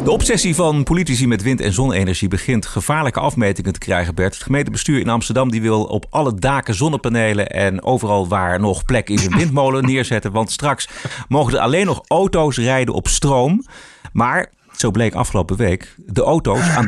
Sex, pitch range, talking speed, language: male, 105-150 Hz, 180 wpm, Dutch